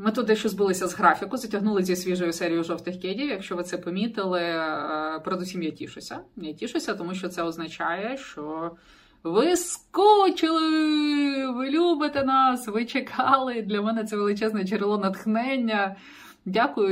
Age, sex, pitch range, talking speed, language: 30-49, female, 175-260 Hz, 140 wpm, Ukrainian